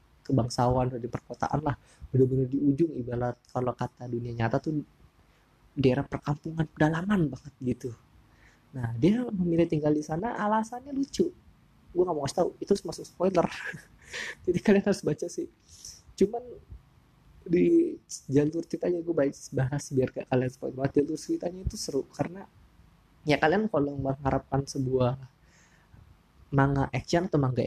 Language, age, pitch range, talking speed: Indonesian, 20-39, 130-160 Hz, 135 wpm